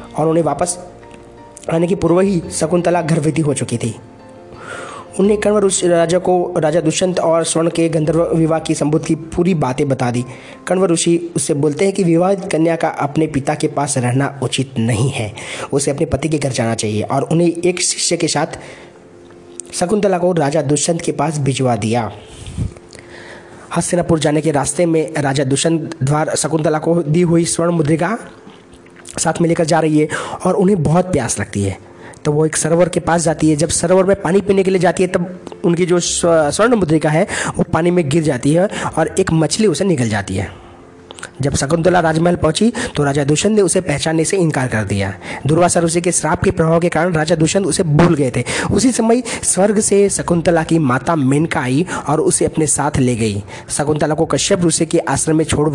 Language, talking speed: Hindi, 165 wpm